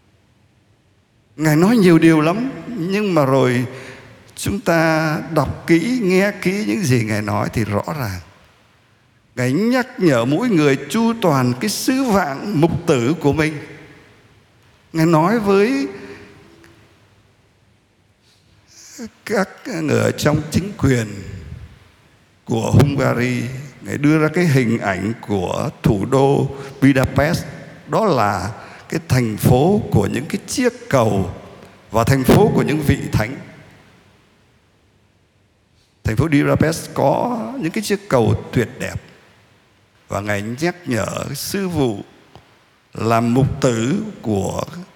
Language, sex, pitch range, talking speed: Vietnamese, male, 110-165 Hz, 125 wpm